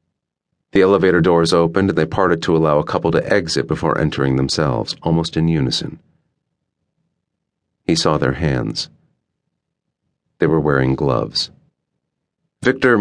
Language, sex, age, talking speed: English, male, 40-59, 130 wpm